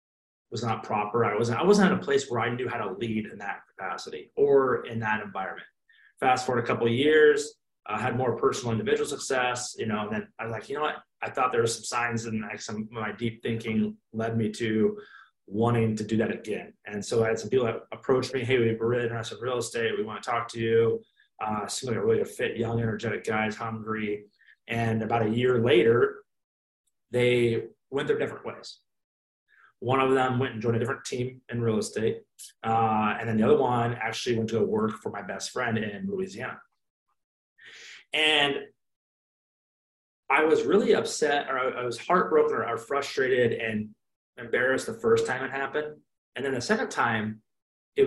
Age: 30-49